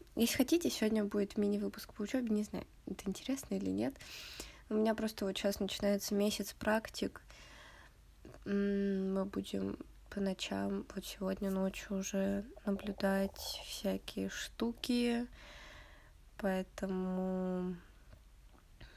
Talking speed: 105 wpm